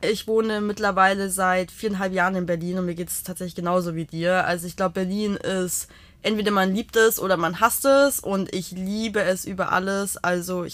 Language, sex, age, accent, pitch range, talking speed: German, female, 20-39, German, 185-220 Hz, 205 wpm